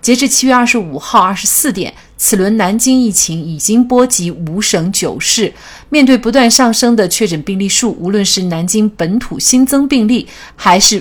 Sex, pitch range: female, 175-235 Hz